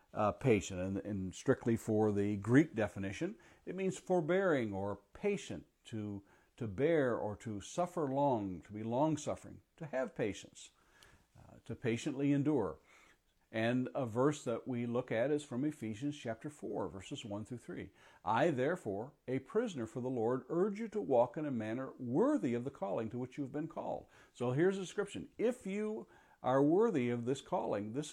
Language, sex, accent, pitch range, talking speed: English, male, American, 105-155 Hz, 175 wpm